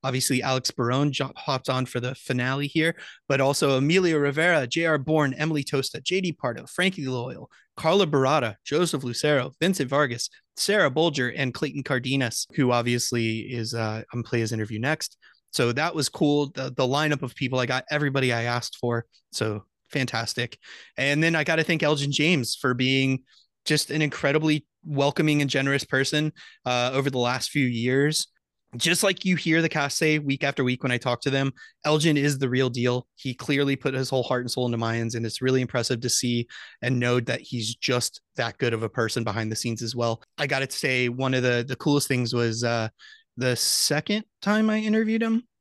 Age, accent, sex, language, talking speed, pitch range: 30-49, American, male, English, 195 wpm, 125-150 Hz